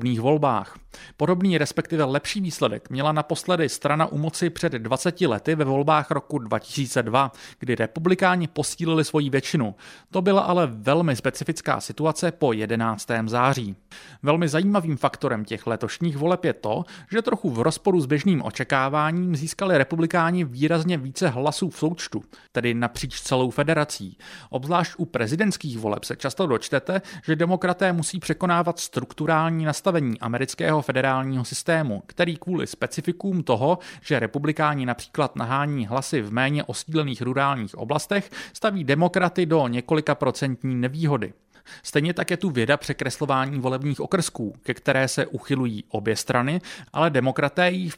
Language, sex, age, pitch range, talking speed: Czech, male, 40-59, 130-170 Hz, 140 wpm